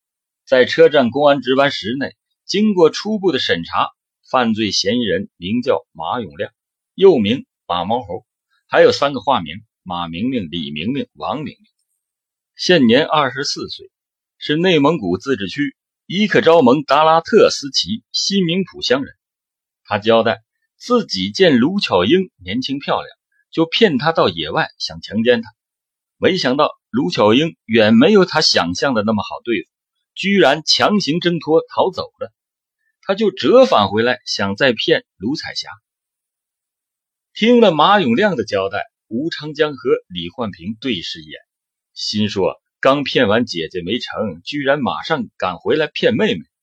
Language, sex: Chinese, male